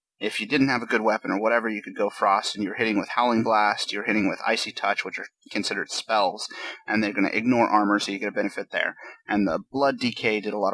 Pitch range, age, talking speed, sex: 110-145 Hz, 30-49, 265 wpm, male